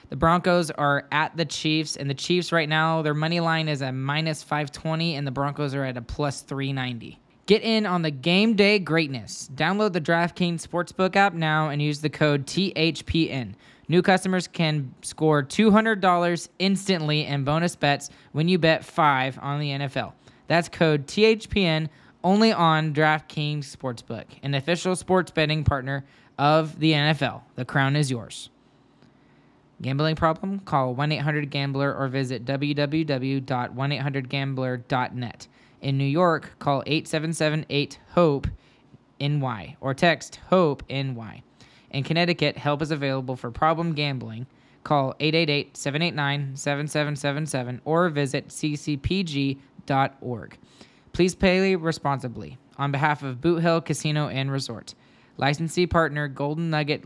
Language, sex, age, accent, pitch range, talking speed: English, male, 10-29, American, 135-165 Hz, 130 wpm